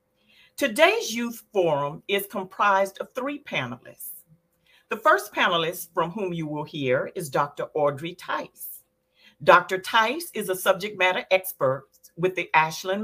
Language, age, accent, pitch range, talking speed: English, 50-69, American, 170-245 Hz, 140 wpm